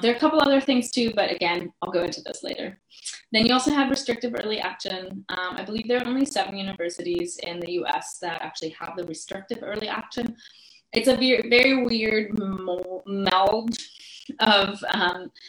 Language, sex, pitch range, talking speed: English, female, 175-240 Hz, 180 wpm